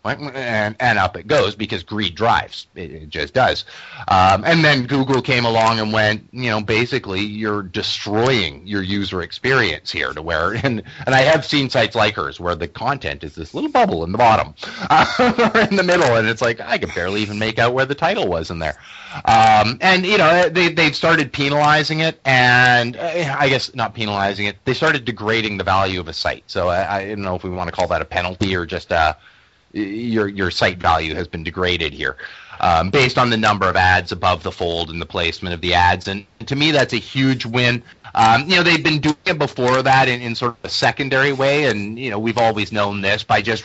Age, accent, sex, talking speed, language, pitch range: 30-49, American, male, 225 wpm, English, 100-135 Hz